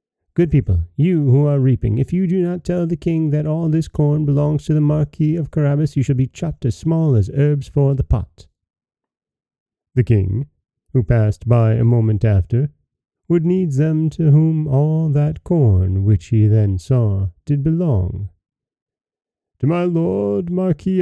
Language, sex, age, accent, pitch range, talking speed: English, male, 30-49, American, 105-150 Hz, 170 wpm